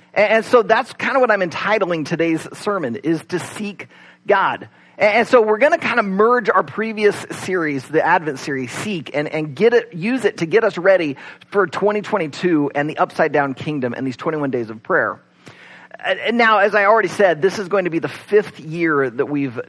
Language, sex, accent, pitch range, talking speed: English, male, American, 155-210 Hz, 205 wpm